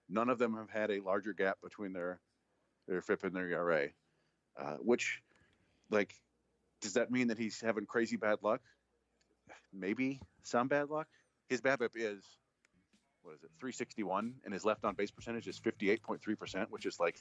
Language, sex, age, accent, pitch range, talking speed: English, male, 40-59, American, 95-115 Hz, 165 wpm